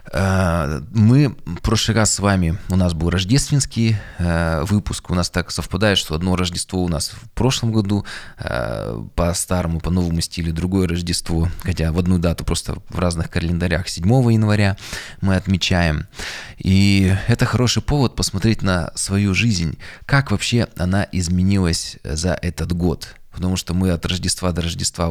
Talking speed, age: 155 wpm, 20-39